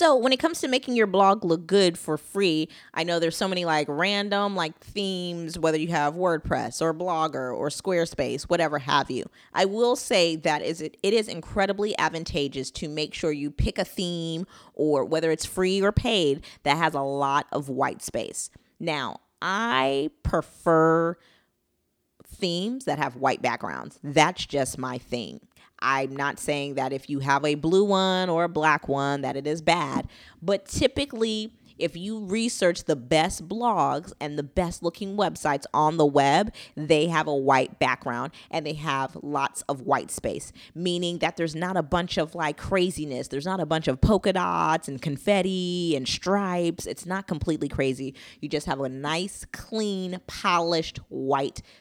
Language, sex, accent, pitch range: English, female, American, 145-185 Hz